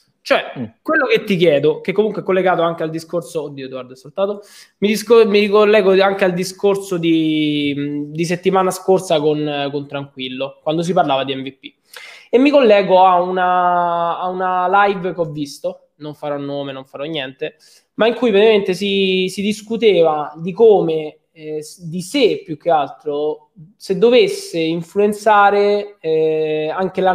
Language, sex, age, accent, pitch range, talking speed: Italian, male, 20-39, native, 150-195 Hz, 160 wpm